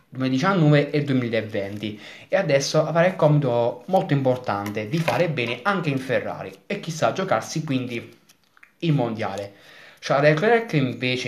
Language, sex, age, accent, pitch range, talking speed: Italian, male, 20-39, native, 120-160 Hz, 145 wpm